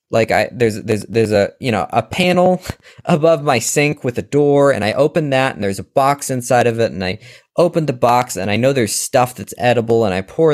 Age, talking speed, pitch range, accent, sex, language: 20-39, 240 wpm, 110-145 Hz, American, male, English